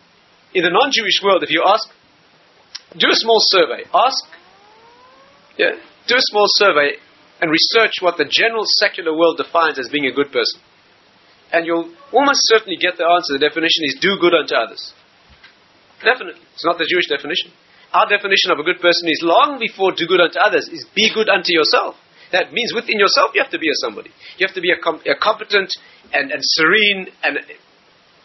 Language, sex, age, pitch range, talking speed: English, male, 40-59, 150-220 Hz, 185 wpm